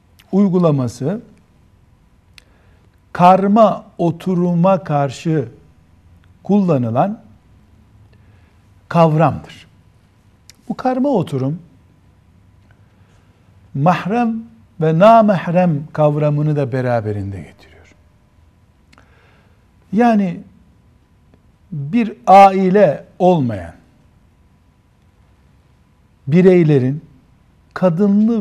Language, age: Turkish, 60-79